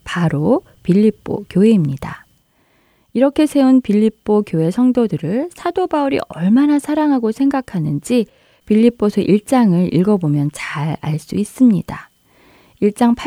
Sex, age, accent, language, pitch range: female, 20-39, native, Korean, 165-230 Hz